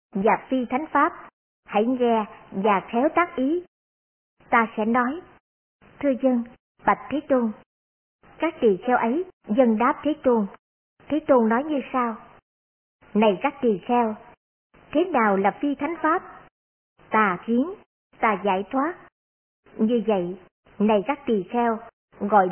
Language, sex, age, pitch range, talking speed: Vietnamese, male, 50-69, 215-280 Hz, 140 wpm